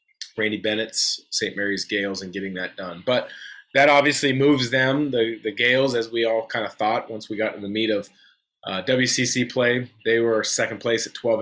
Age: 20-39